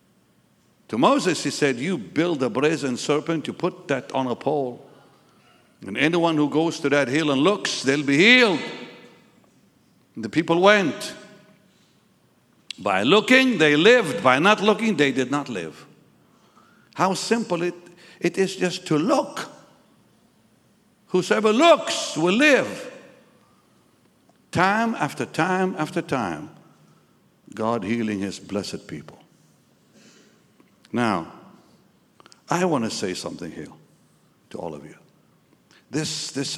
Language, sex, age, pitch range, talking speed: English, male, 60-79, 120-180 Hz, 125 wpm